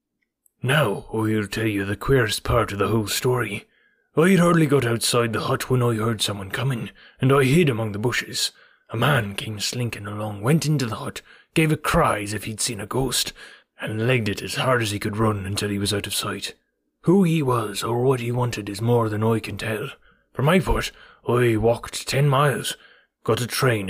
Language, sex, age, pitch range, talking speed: English, male, 20-39, 105-135 Hz, 210 wpm